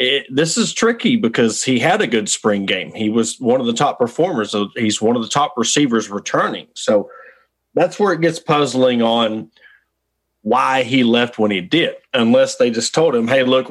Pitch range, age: 115-155 Hz, 30-49